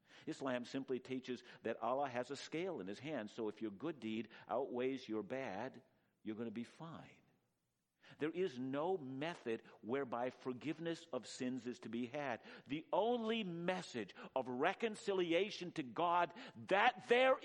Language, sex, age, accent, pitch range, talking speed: English, male, 50-69, American, 130-195 Hz, 155 wpm